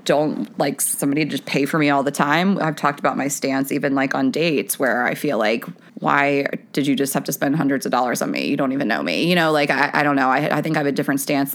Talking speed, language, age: 290 wpm, English, 20-39